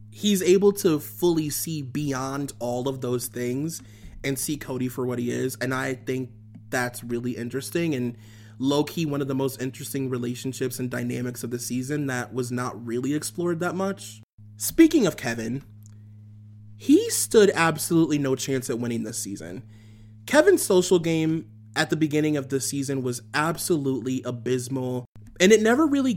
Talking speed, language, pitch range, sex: 165 wpm, English, 120-160 Hz, male